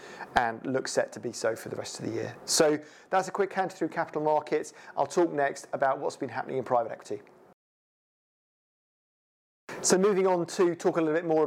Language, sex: English, male